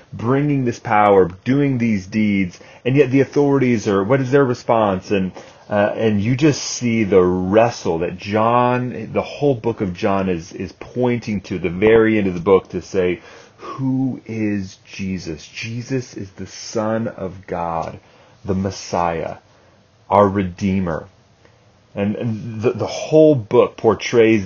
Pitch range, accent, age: 95-115 Hz, American, 30-49